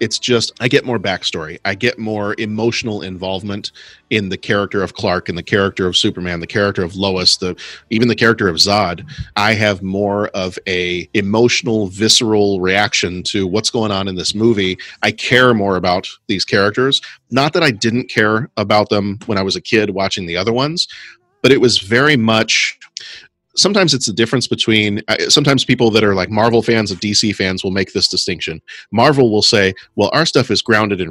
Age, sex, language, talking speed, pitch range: 30-49, male, English, 195 wpm, 95-115 Hz